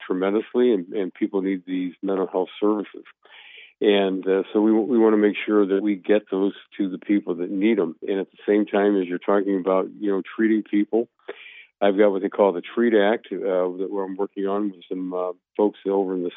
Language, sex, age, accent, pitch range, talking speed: English, male, 50-69, American, 95-110 Hz, 220 wpm